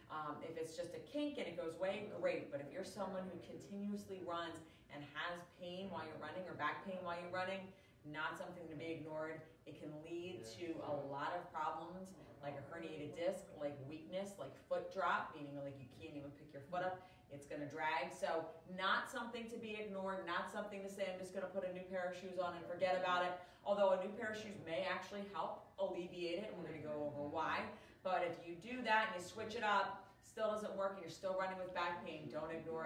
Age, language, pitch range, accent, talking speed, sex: 30-49, English, 155-190 Hz, American, 235 wpm, female